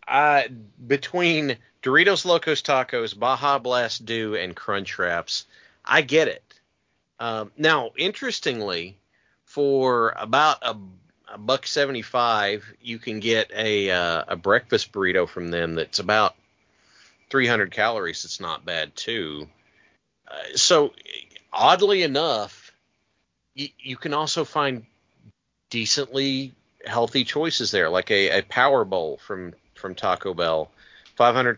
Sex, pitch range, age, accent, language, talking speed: male, 100-130 Hz, 40-59, American, English, 125 wpm